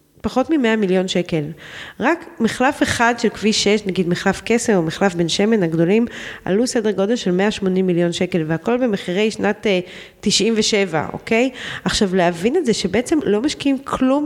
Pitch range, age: 175-235 Hz, 30-49